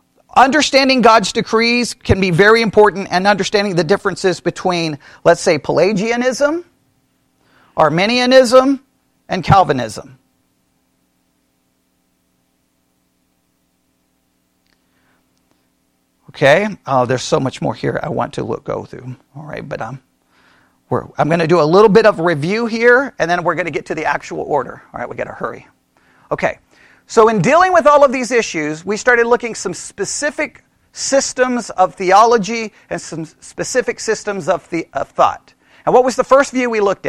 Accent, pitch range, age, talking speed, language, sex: American, 155-235 Hz, 40-59, 155 wpm, English, male